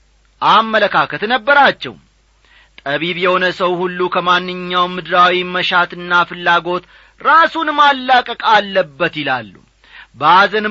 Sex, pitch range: male, 155-230 Hz